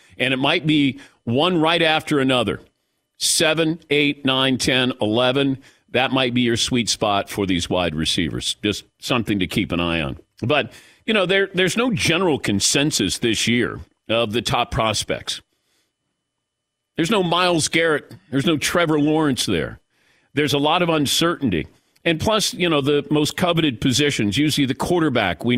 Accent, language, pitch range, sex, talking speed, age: American, English, 120-155 Hz, male, 165 wpm, 50-69